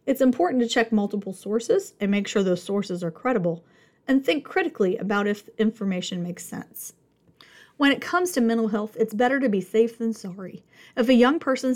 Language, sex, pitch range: English, female, 205-255 Hz